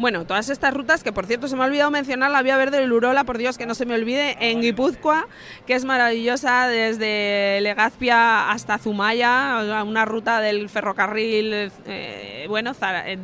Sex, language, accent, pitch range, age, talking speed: female, Spanish, Spanish, 205-245 Hz, 20-39, 175 wpm